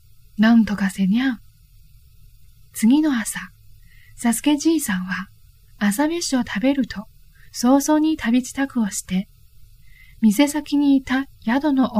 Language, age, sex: Chinese, 20-39, female